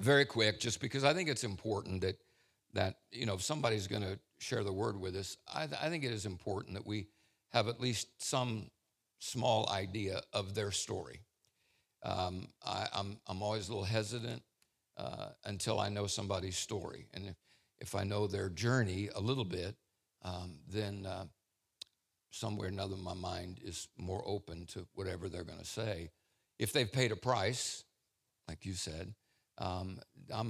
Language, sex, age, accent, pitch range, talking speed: English, male, 60-79, American, 100-120 Hz, 175 wpm